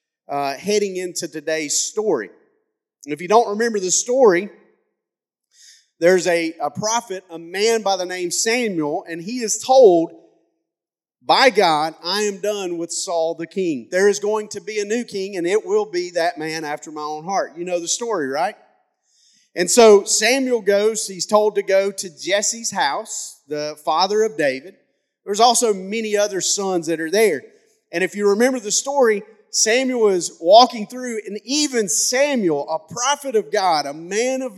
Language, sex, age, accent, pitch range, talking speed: English, male, 40-59, American, 180-245 Hz, 175 wpm